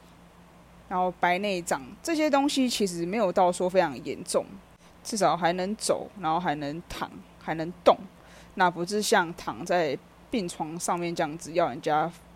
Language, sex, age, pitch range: Chinese, female, 20-39, 175-235 Hz